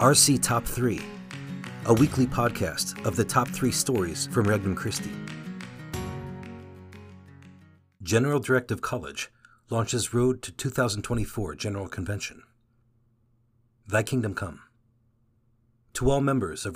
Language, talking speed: English, 105 wpm